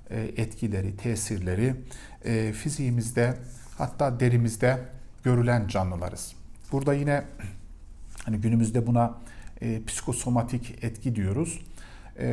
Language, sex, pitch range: Turkish, male, 105-125 Hz